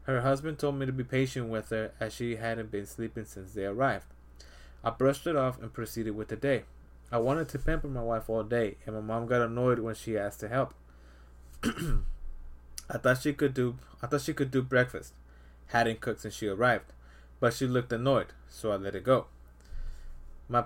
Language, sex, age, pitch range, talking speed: English, male, 20-39, 100-130 Hz, 205 wpm